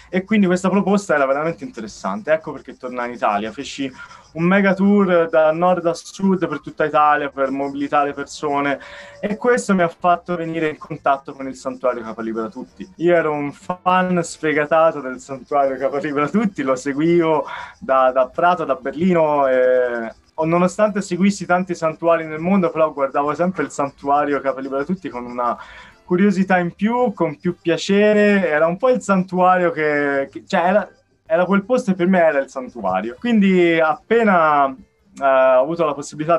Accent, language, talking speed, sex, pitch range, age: native, Italian, 165 wpm, male, 140-180 Hz, 20-39